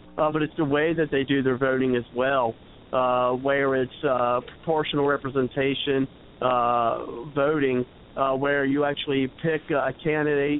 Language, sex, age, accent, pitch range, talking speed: English, male, 50-69, American, 125-155 Hz, 155 wpm